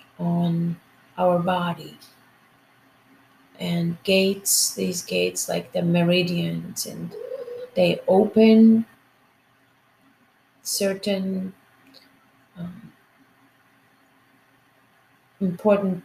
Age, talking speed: 30-49, 60 wpm